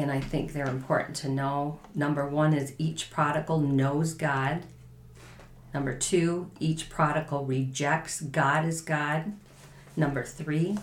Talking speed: 135 wpm